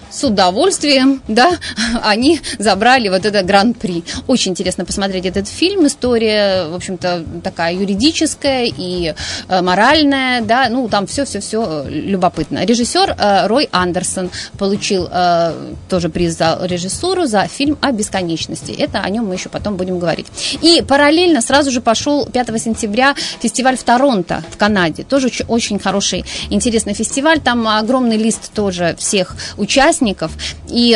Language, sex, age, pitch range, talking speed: Russian, female, 30-49, 190-250 Hz, 140 wpm